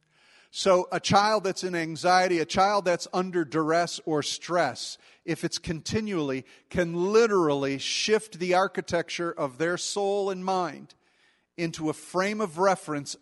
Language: English